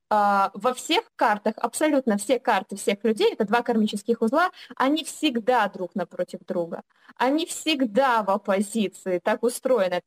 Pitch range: 210-265 Hz